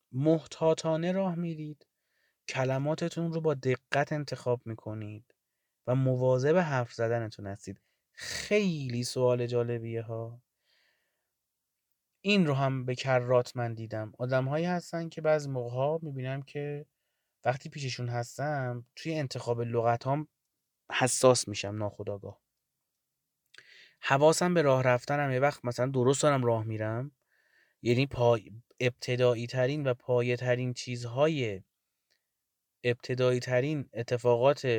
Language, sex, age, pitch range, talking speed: Persian, male, 30-49, 115-145 Hz, 110 wpm